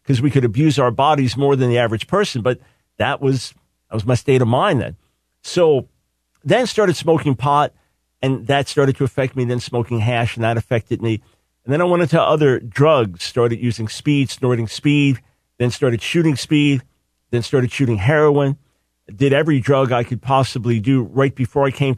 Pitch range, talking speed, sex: 115-140 Hz, 190 wpm, male